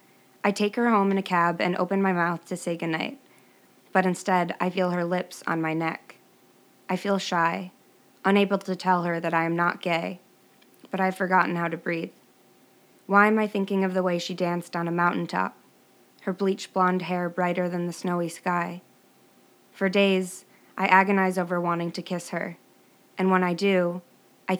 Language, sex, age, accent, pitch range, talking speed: English, female, 20-39, American, 170-190 Hz, 185 wpm